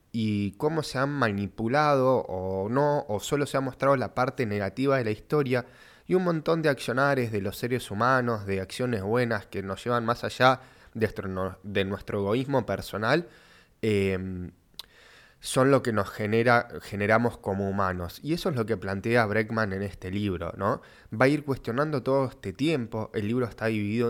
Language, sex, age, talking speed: Spanish, male, 20-39, 170 wpm